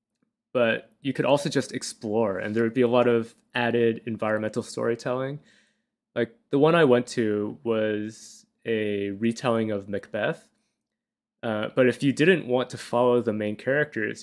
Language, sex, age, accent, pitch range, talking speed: English, male, 20-39, American, 110-130 Hz, 160 wpm